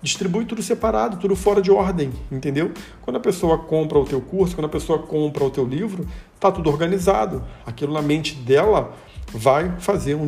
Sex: male